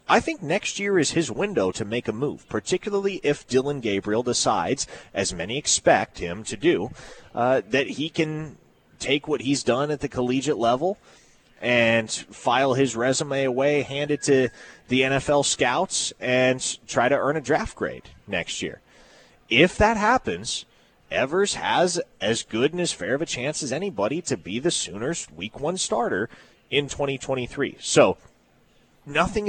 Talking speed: 165 wpm